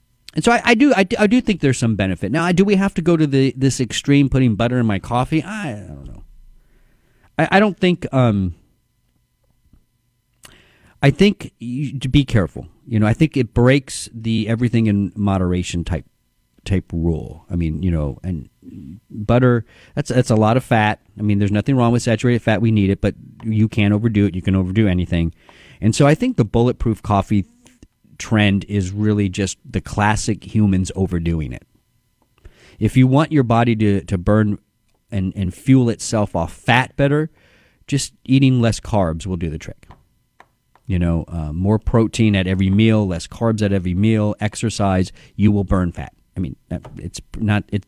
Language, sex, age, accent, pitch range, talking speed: English, male, 40-59, American, 95-125 Hz, 185 wpm